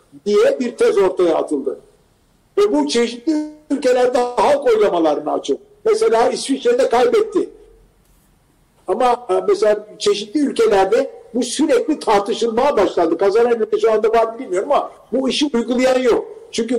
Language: Turkish